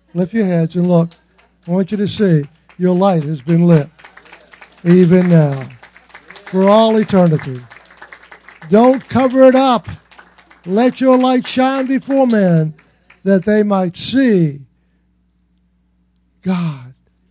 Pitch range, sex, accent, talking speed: 140-210 Hz, male, American, 120 wpm